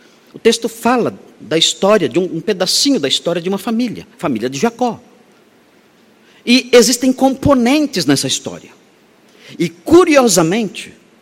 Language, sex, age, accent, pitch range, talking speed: Portuguese, male, 50-69, Brazilian, 170-235 Hz, 125 wpm